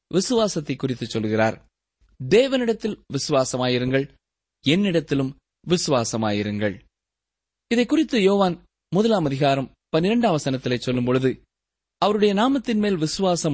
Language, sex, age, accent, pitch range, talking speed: Tamil, male, 20-39, native, 130-205 Hz, 85 wpm